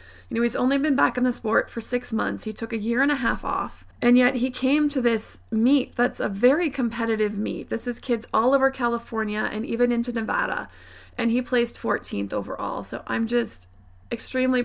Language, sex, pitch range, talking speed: English, female, 220-265 Hz, 210 wpm